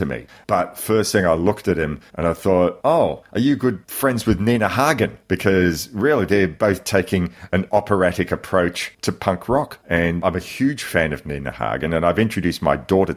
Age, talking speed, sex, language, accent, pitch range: 40-59, 195 wpm, male, English, Australian, 85-100 Hz